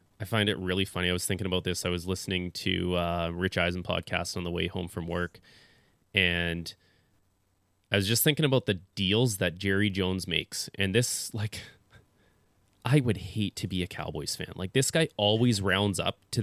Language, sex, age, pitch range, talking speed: English, male, 20-39, 95-125 Hz, 195 wpm